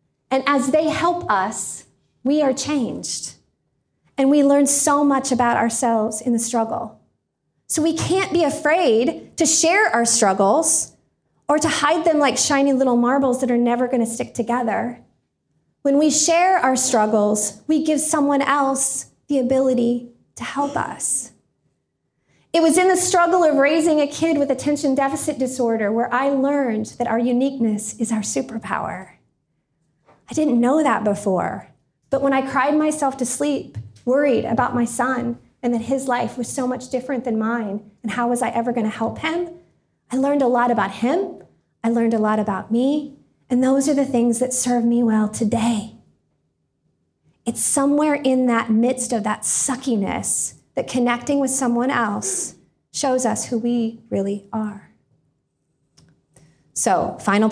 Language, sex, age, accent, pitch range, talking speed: English, female, 30-49, American, 235-285 Hz, 165 wpm